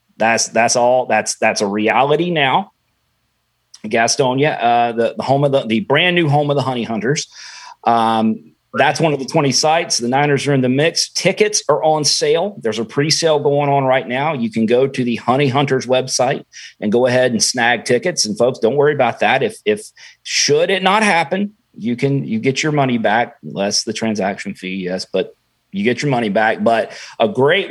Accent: American